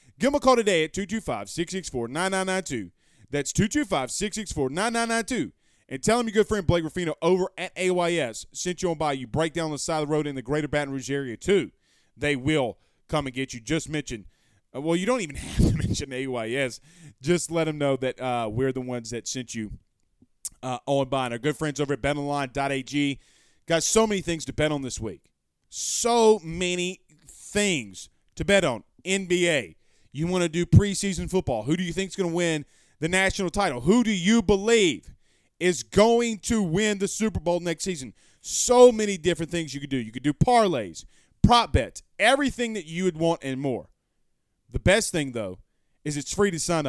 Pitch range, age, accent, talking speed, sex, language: 135-190 Hz, 30-49, American, 195 wpm, male, English